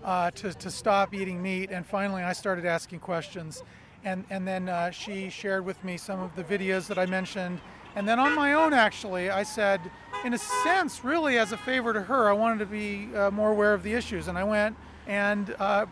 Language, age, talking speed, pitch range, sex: English, 40-59, 220 wpm, 190-220 Hz, male